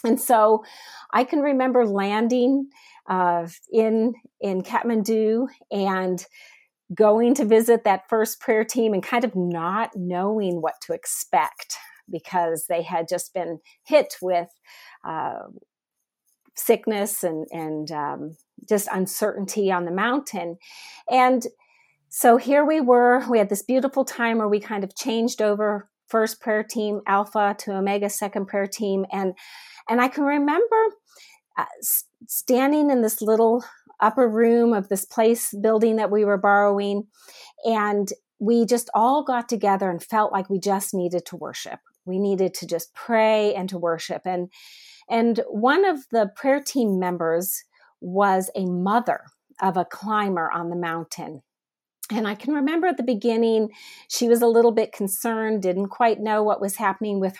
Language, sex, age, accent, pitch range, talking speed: English, female, 40-59, American, 195-245 Hz, 155 wpm